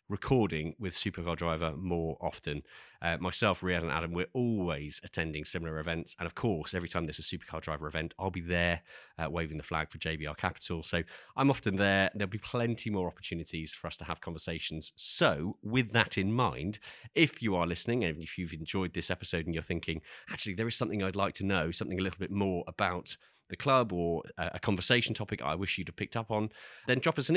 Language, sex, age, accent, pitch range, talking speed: English, male, 30-49, British, 85-105 Hz, 215 wpm